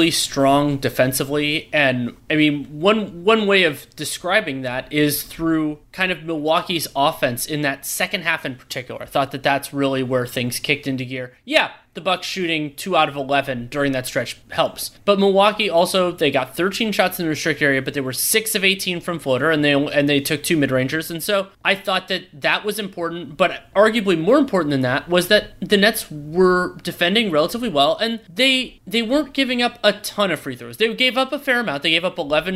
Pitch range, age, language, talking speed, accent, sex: 145-195 Hz, 30-49, English, 210 wpm, American, male